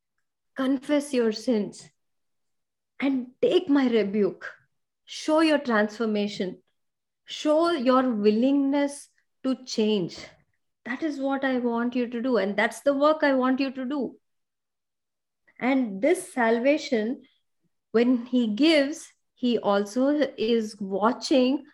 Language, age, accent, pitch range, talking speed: English, 20-39, Indian, 215-275 Hz, 115 wpm